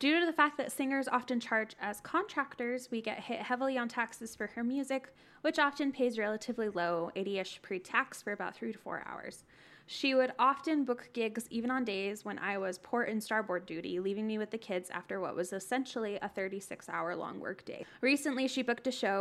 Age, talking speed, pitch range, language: 10-29, 205 wpm, 205-255 Hz, English